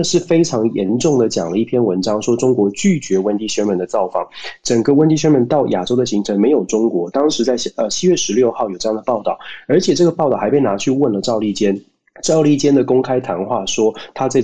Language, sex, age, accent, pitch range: Chinese, male, 20-39, native, 110-140 Hz